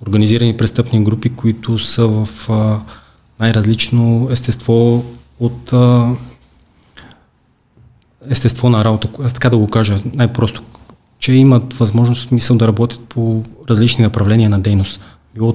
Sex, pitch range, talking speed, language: male, 110-120 Hz, 120 wpm, Bulgarian